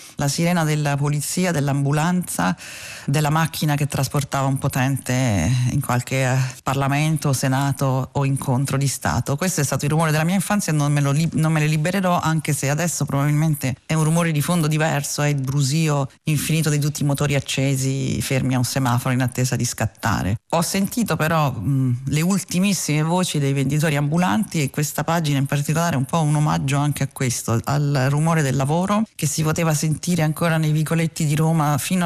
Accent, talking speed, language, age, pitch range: native, 185 wpm, Italian, 40-59, 135-160 Hz